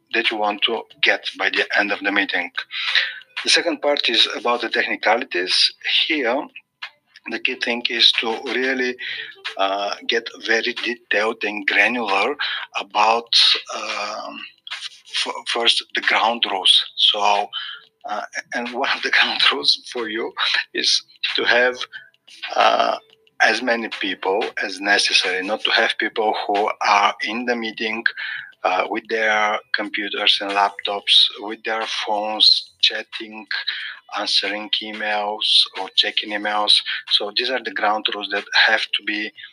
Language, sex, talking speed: English, male, 140 wpm